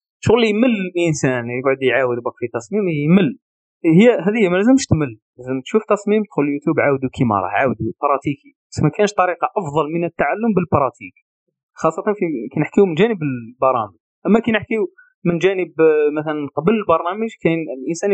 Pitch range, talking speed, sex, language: 135-210 Hz, 160 wpm, male, Arabic